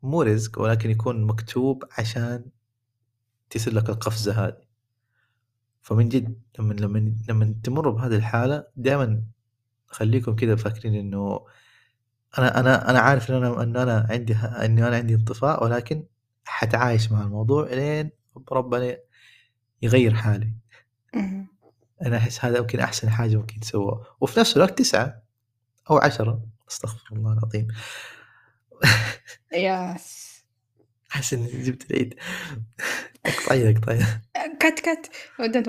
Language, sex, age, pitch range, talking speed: Arabic, male, 20-39, 110-125 Hz, 120 wpm